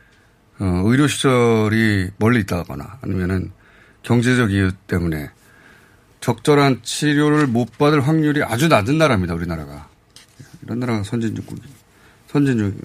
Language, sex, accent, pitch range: Korean, male, native, 100-125 Hz